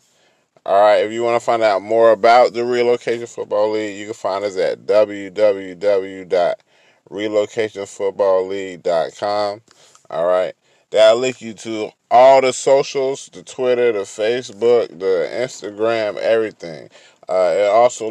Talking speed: 130 wpm